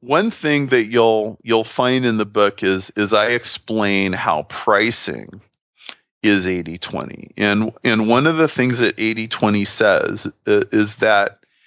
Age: 40-59